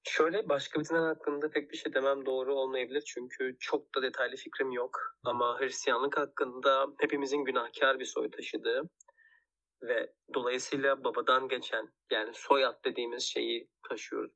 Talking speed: 140 wpm